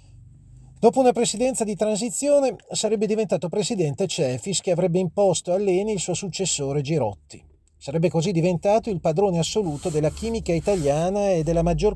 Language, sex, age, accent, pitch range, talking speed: Italian, male, 30-49, native, 140-195 Hz, 150 wpm